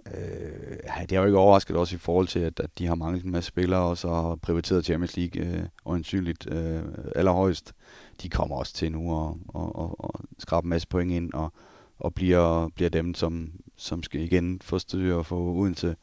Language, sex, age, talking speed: Danish, male, 30-49, 195 wpm